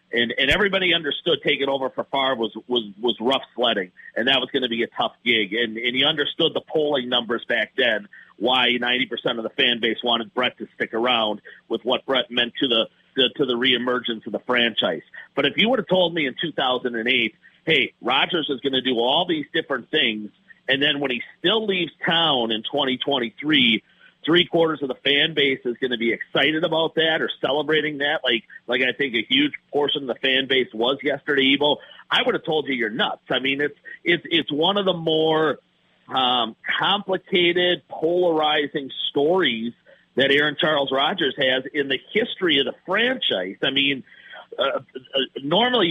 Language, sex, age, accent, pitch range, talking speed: English, male, 40-59, American, 125-160 Hz, 200 wpm